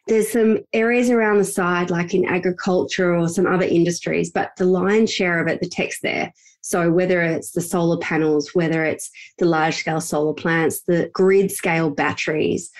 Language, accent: English, Australian